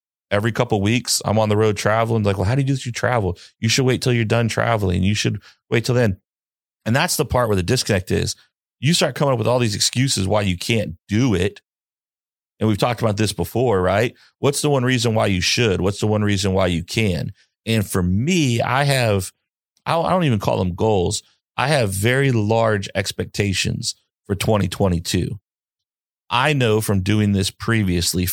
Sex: male